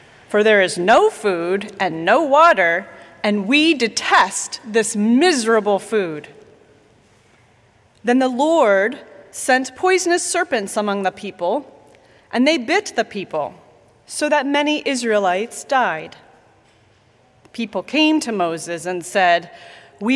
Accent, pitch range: American, 200-300 Hz